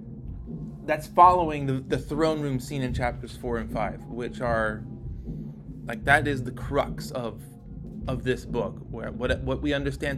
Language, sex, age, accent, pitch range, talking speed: English, male, 20-39, American, 120-150 Hz, 165 wpm